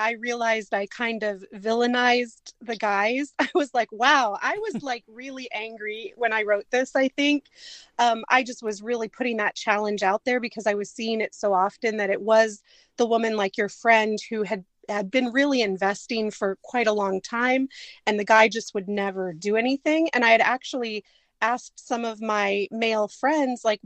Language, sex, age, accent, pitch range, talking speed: English, female, 30-49, American, 210-255 Hz, 195 wpm